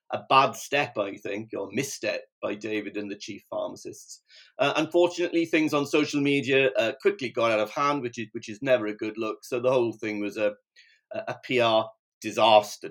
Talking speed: 195 wpm